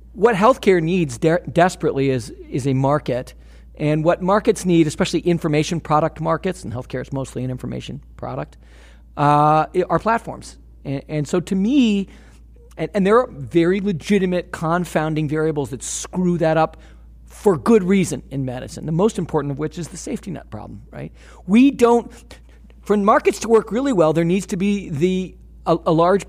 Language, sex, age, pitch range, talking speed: English, male, 40-59, 155-215 Hz, 175 wpm